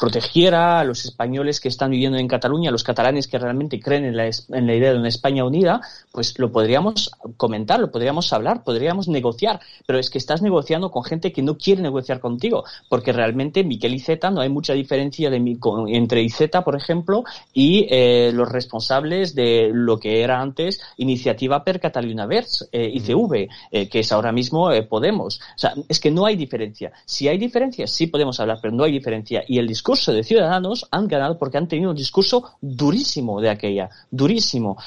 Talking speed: 200 wpm